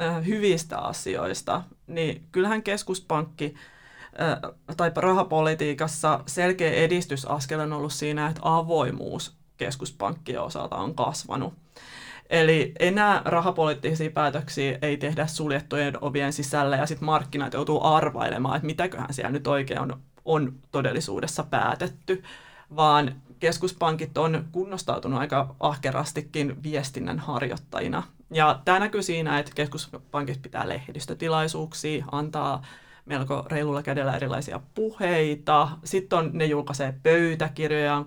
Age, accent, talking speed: 30-49, native, 105 wpm